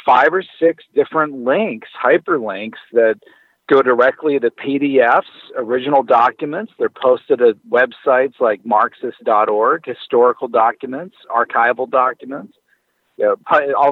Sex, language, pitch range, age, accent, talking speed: male, English, 130-160 Hz, 50-69, American, 105 wpm